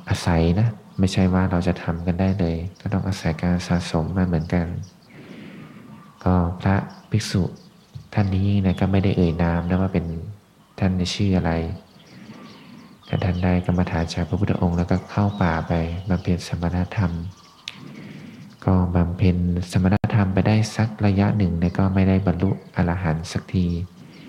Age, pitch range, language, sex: 20-39, 85-95 Hz, Thai, male